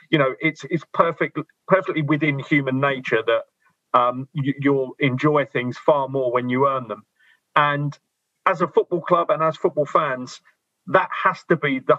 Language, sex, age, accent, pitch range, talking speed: English, male, 40-59, British, 140-175 Hz, 175 wpm